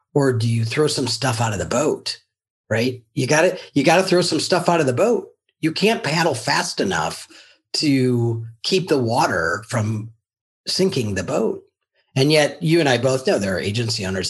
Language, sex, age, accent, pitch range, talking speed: English, male, 40-59, American, 100-140 Hz, 200 wpm